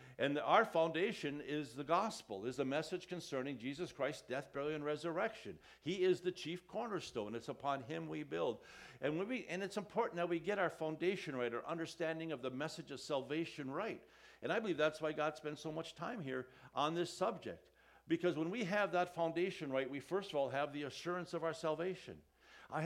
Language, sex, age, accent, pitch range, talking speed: English, male, 60-79, American, 145-180 Hz, 205 wpm